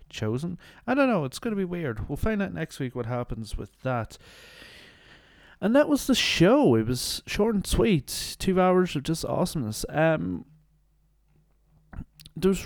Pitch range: 115-160 Hz